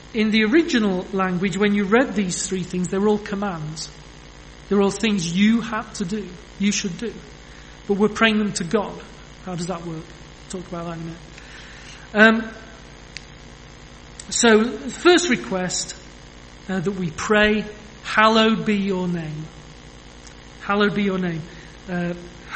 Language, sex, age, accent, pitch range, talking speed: English, male, 40-59, British, 170-215 Hz, 150 wpm